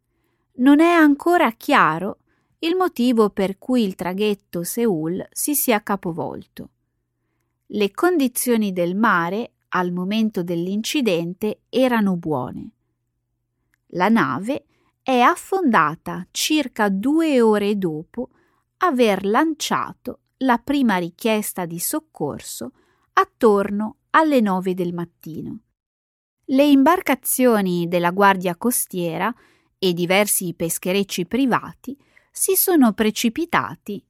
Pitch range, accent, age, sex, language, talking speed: 175-255 Hz, native, 30-49, female, Italian, 95 wpm